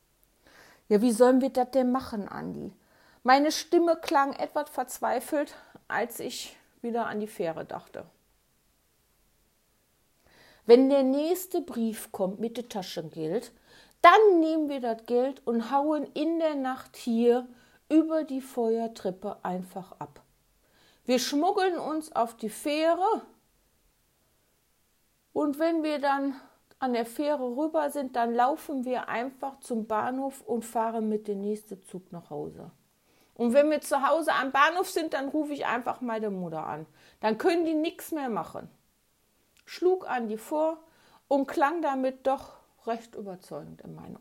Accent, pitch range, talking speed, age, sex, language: German, 225-300 Hz, 145 wpm, 50-69, female, German